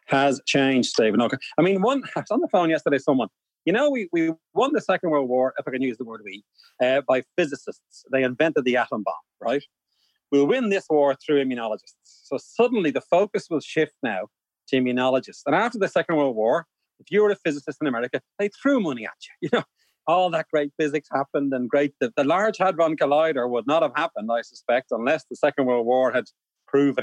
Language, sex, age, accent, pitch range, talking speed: English, male, 30-49, Irish, 130-190 Hz, 220 wpm